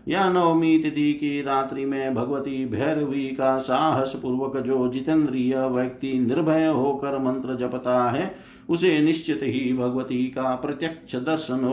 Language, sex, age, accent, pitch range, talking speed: Hindi, male, 50-69, native, 125-135 Hz, 135 wpm